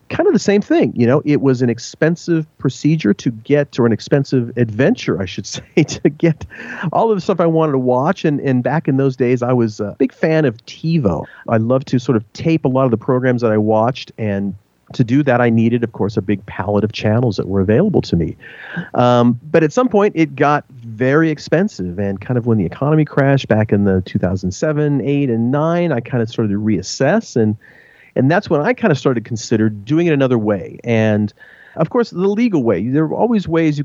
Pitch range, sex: 105-150 Hz, male